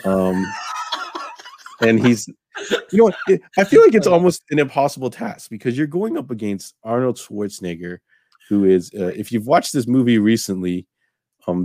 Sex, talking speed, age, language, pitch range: male, 155 wpm, 30-49, English, 90-115 Hz